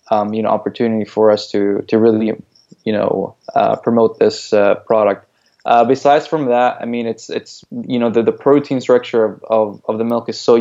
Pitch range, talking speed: 110-120 Hz, 210 wpm